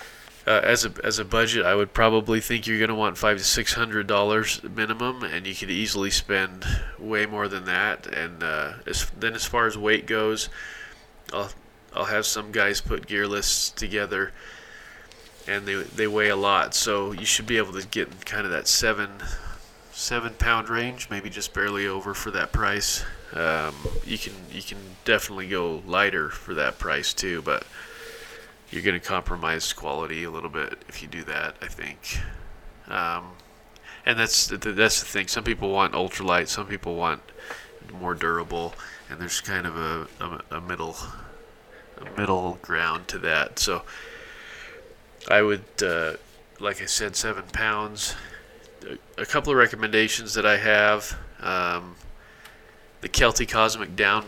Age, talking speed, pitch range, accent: 20-39, 165 wpm, 100-115 Hz, American